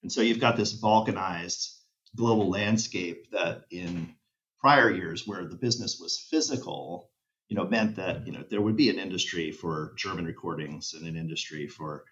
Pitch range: 85-115 Hz